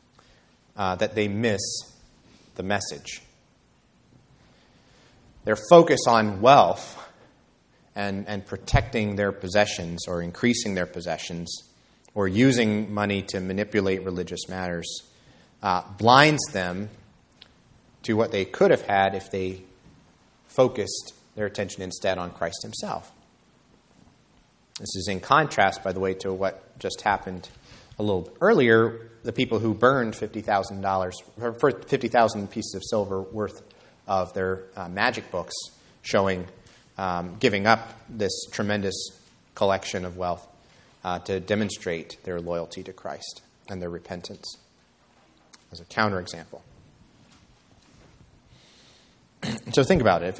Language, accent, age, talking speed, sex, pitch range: English, American, 30-49, 120 wpm, male, 90-110 Hz